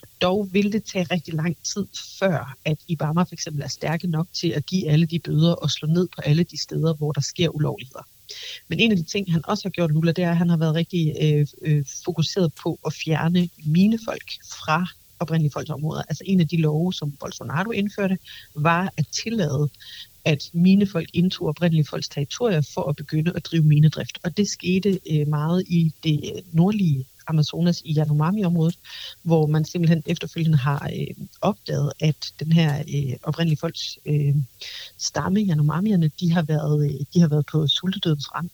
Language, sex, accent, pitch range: Danish, female, native, 150-175 Hz